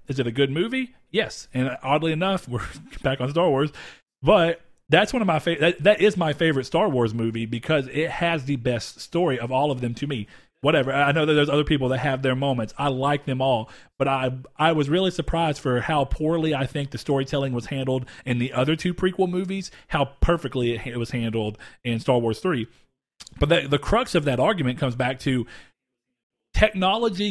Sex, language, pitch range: male, English, 125-155 Hz